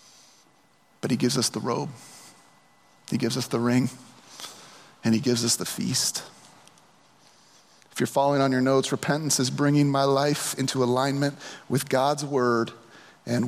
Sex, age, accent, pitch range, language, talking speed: male, 30-49, American, 135-165 Hz, English, 150 wpm